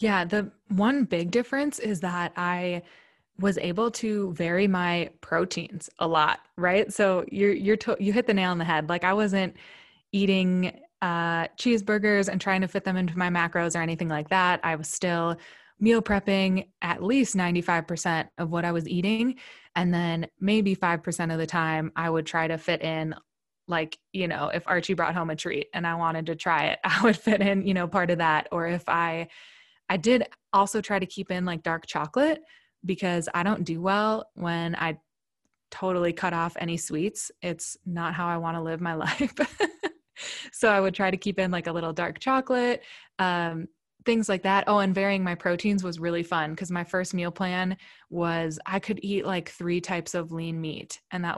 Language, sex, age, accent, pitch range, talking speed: English, female, 20-39, American, 170-200 Hz, 200 wpm